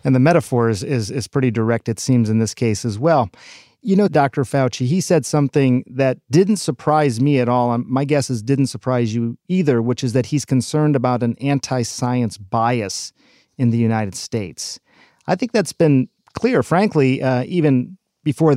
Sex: male